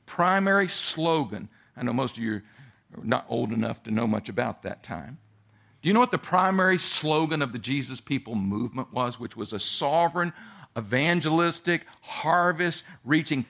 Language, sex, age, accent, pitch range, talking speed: English, male, 50-69, American, 125-170 Hz, 165 wpm